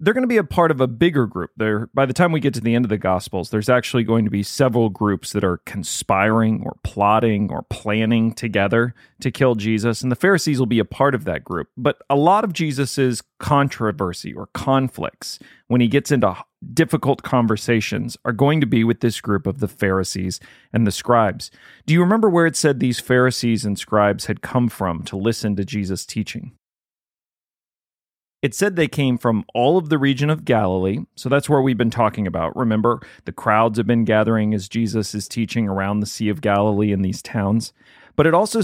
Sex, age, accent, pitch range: male, 40-59, American, 105-130 Hz